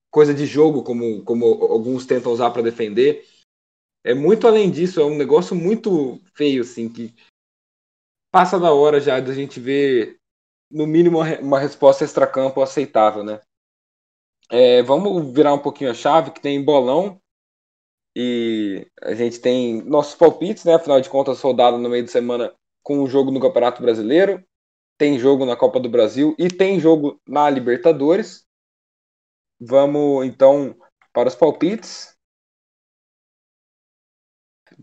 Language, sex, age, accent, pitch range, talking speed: Portuguese, male, 20-39, Brazilian, 130-175 Hz, 145 wpm